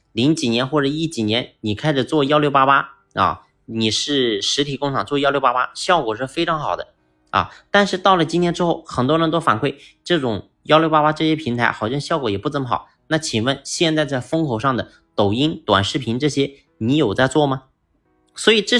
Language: Chinese